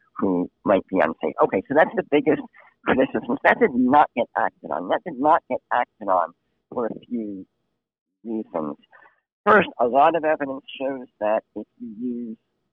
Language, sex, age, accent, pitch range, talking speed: English, male, 60-79, American, 110-150 Hz, 170 wpm